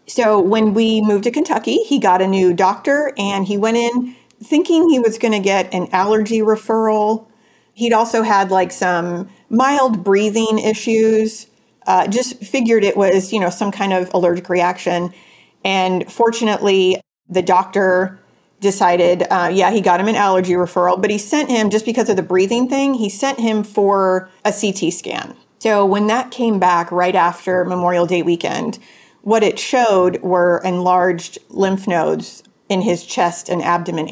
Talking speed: 170 wpm